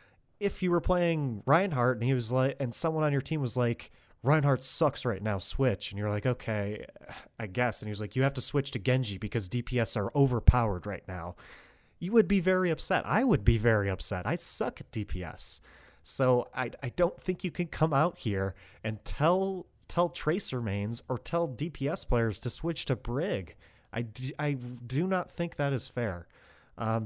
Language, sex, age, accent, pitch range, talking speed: English, male, 30-49, American, 105-140 Hz, 200 wpm